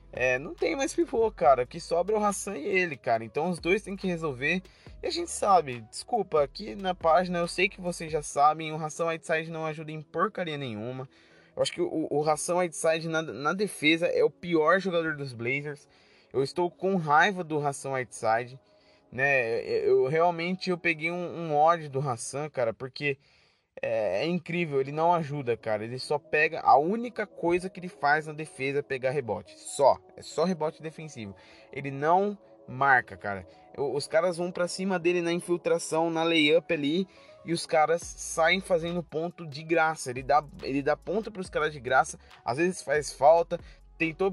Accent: Brazilian